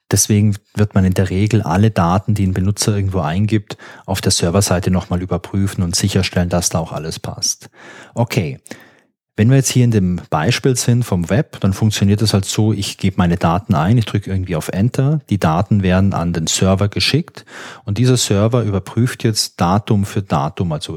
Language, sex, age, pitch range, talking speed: German, male, 30-49, 95-125 Hz, 190 wpm